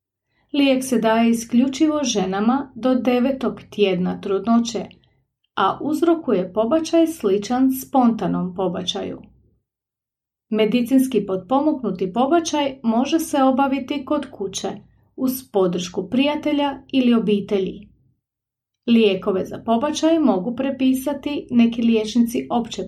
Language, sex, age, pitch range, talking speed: Croatian, female, 30-49, 195-270 Hz, 95 wpm